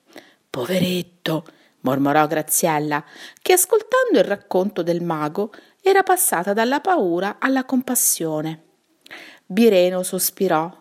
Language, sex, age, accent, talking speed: Italian, female, 40-59, native, 95 wpm